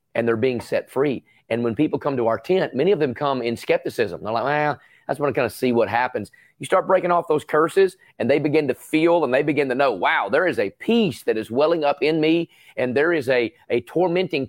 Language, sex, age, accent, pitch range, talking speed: English, male, 30-49, American, 125-165 Hz, 260 wpm